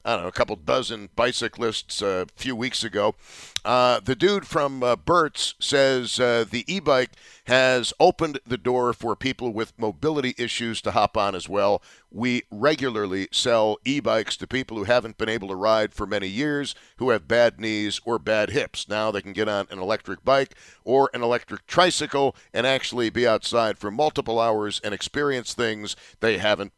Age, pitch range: 50-69, 105-130 Hz